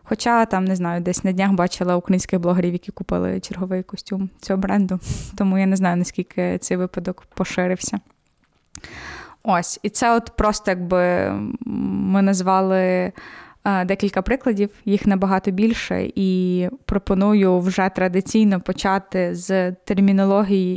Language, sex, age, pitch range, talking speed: Ukrainian, female, 20-39, 185-215 Hz, 125 wpm